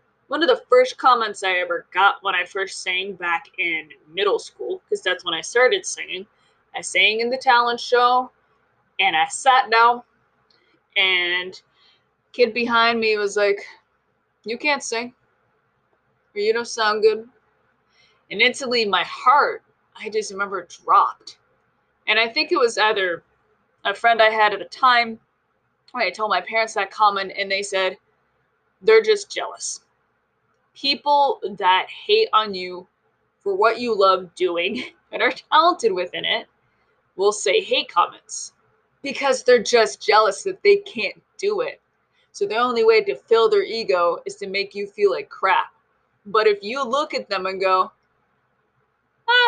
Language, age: English, 20-39